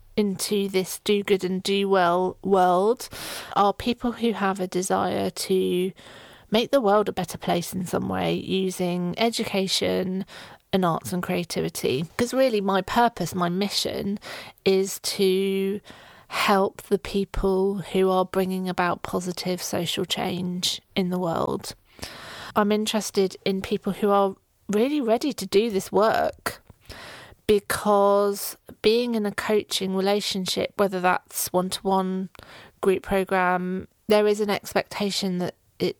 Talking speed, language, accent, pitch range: 135 wpm, English, British, 180-205 Hz